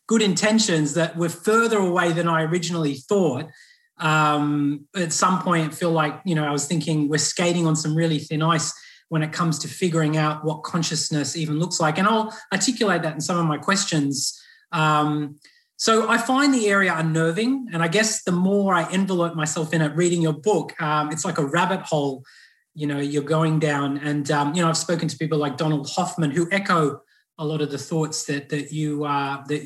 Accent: Australian